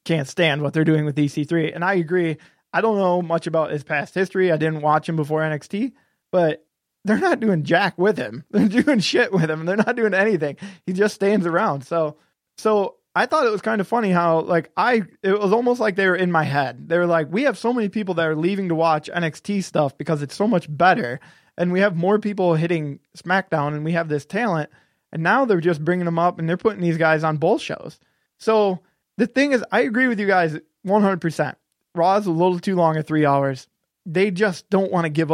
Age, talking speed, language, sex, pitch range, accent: 20-39, 235 wpm, English, male, 155-200 Hz, American